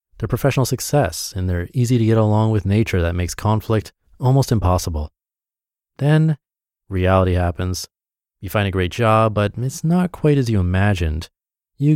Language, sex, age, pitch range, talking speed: English, male, 30-49, 90-120 Hz, 135 wpm